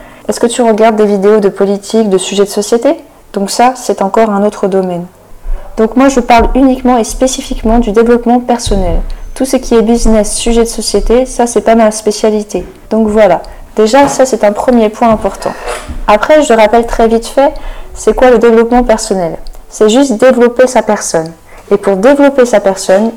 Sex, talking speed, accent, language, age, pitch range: female, 185 wpm, French, French, 20-39, 200-240 Hz